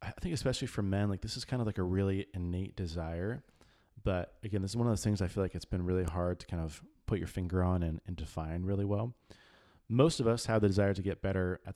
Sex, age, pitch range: male, 30-49, 90-110 Hz